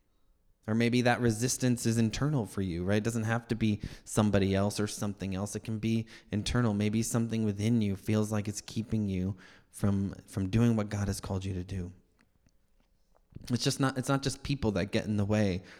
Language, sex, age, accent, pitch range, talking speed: English, male, 20-39, American, 100-120 Hz, 205 wpm